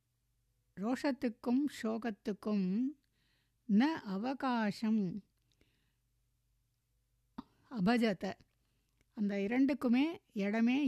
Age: 60-79